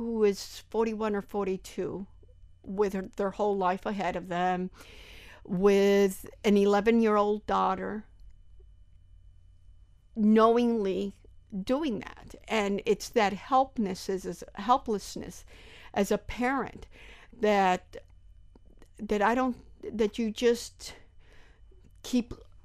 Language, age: English, 50-69